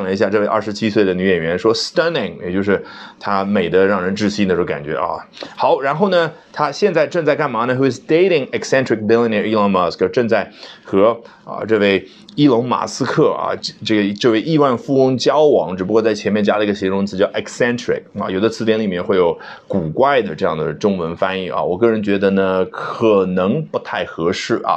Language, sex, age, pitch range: Chinese, male, 20-39, 95-135 Hz